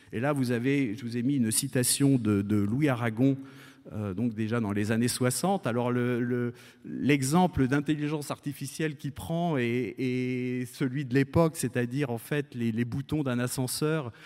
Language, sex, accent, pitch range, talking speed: French, male, French, 115-140 Hz, 175 wpm